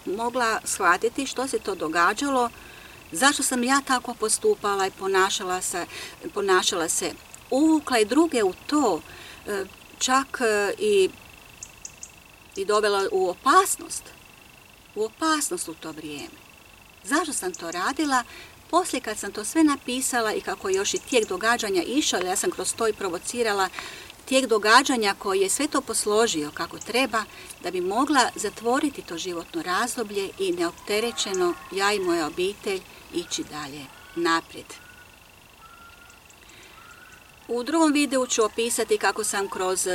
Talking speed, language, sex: 130 wpm, Croatian, female